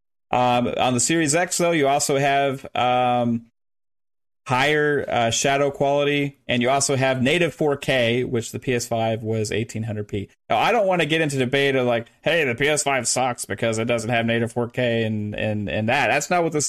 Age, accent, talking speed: 30-49, American, 230 wpm